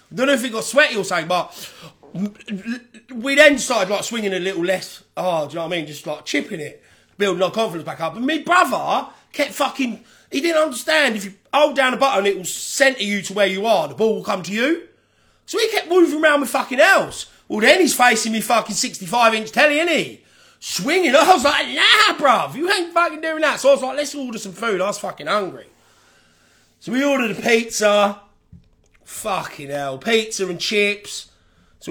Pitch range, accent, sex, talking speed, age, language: 155-255 Hz, British, male, 215 wpm, 30-49, English